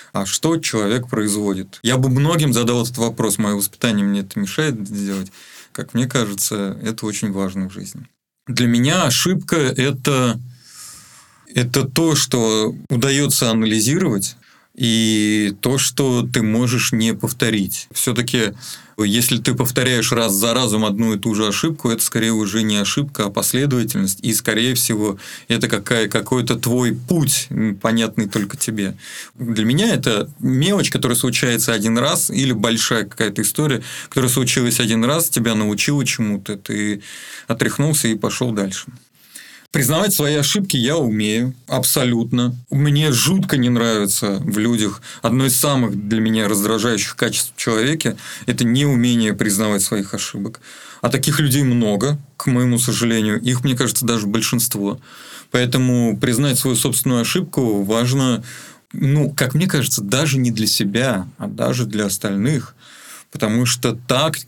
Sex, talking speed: male, 140 wpm